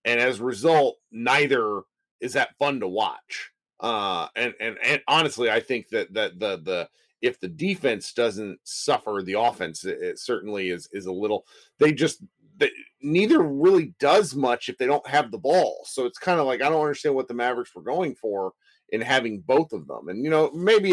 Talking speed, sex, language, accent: 205 wpm, male, English, American